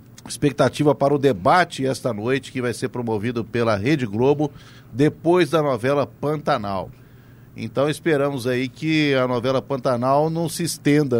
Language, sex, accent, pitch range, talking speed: Portuguese, male, Brazilian, 120-150 Hz, 145 wpm